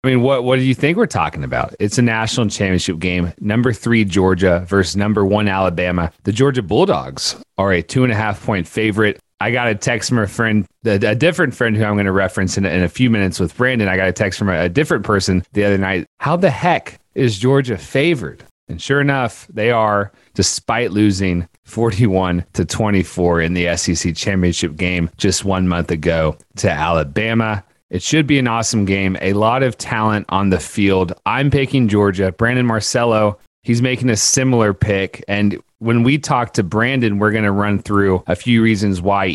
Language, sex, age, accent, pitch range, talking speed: English, male, 30-49, American, 95-115 Hz, 200 wpm